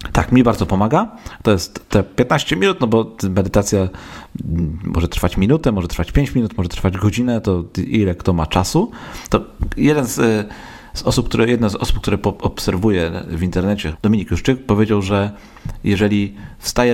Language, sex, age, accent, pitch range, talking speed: Polish, male, 40-59, native, 90-110 Hz, 150 wpm